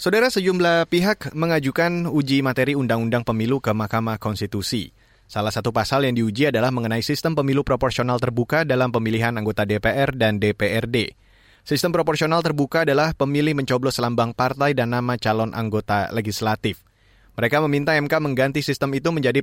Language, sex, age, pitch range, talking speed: Indonesian, male, 20-39, 120-145 Hz, 150 wpm